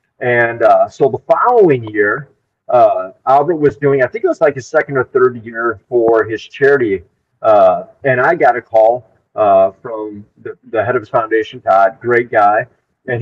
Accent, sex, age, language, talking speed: American, male, 40-59, English, 185 wpm